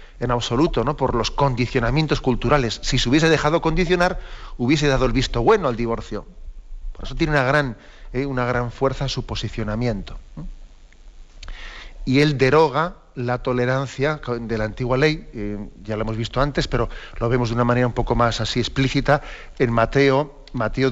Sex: male